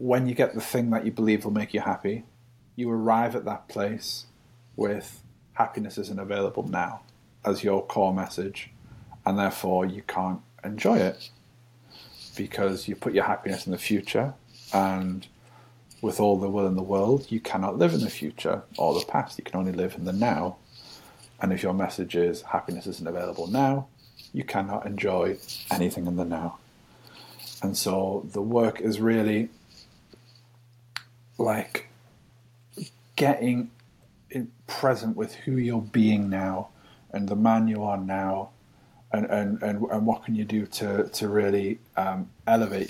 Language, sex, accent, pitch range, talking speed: English, male, British, 105-120 Hz, 160 wpm